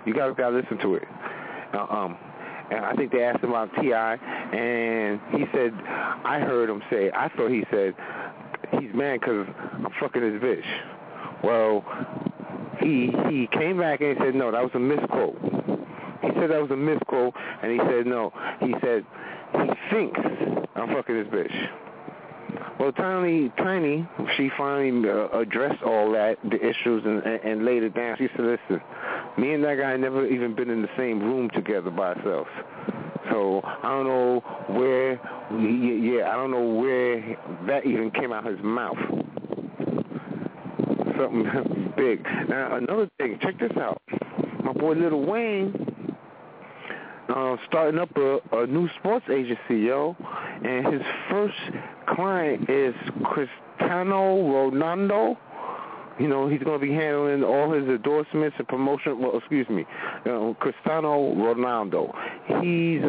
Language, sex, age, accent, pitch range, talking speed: English, male, 30-49, American, 120-150 Hz, 155 wpm